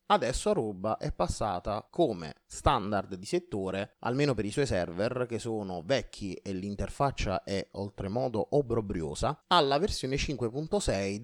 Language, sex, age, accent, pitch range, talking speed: Italian, male, 30-49, native, 95-125 Hz, 130 wpm